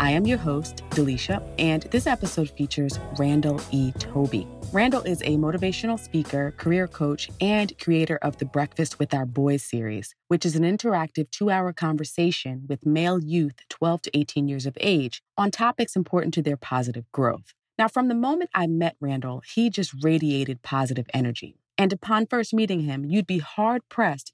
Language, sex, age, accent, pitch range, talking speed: English, female, 30-49, American, 140-180 Hz, 175 wpm